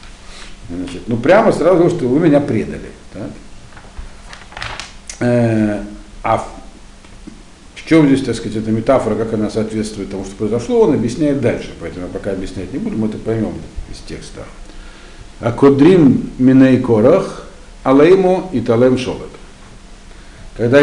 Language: Russian